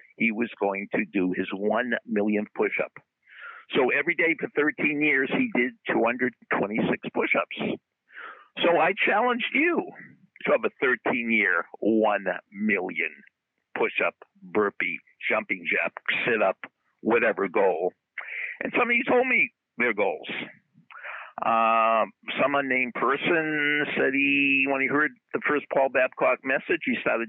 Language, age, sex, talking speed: English, 50-69, male, 130 wpm